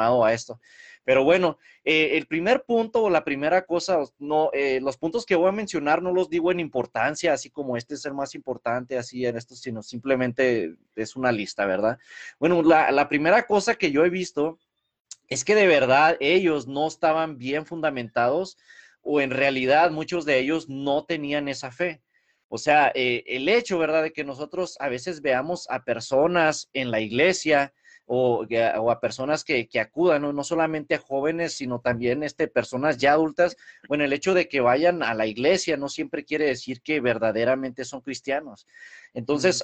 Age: 30-49